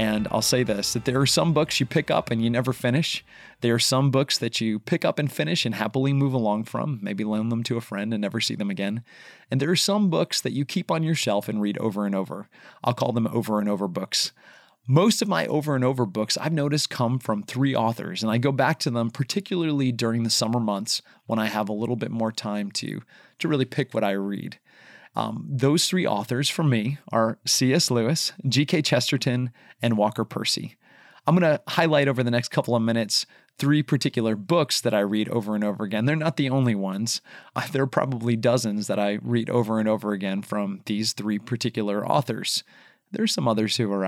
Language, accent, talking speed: English, American, 225 wpm